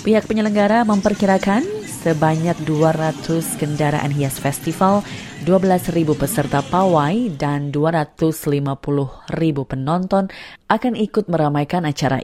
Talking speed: 100 wpm